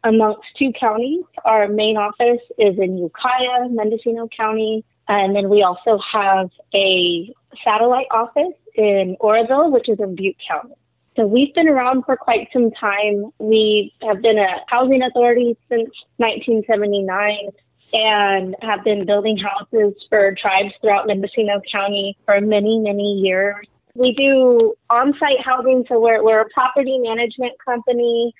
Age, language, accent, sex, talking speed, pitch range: 30-49, English, American, female, 145 wpm, 205-240 Hz